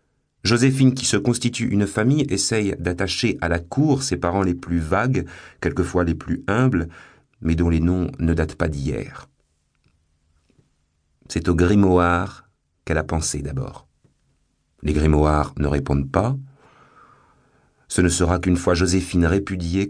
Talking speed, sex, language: 140 wpm, male, French